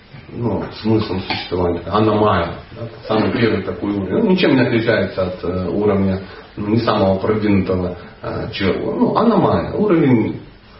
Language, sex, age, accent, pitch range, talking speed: Russian, male, 40-59, native, 105-155 Hz, 130 wpm